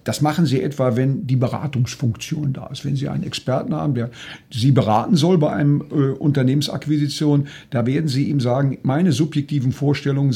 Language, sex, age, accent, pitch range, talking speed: German, male, 50-69, German, 130-160 Hz, 175 wpm